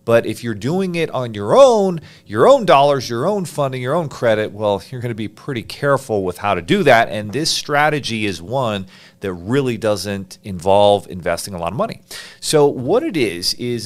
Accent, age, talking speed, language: American, 40-59, 205 wpm, English